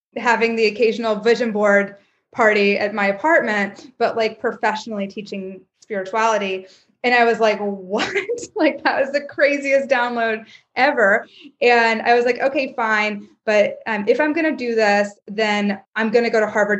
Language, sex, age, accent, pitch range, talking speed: English, female, 20-39, American, 205-235 Hz, 160 wpm